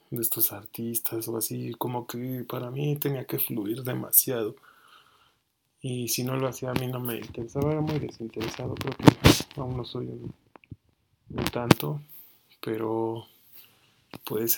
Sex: male